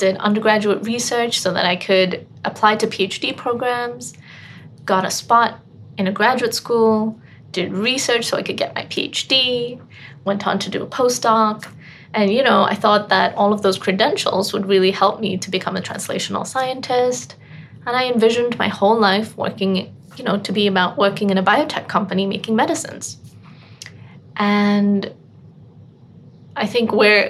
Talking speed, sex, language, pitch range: 165 wpm, female, English, 185-215 Hz